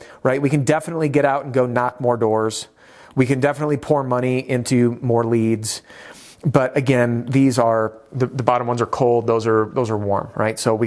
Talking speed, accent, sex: 205 wpm, American, male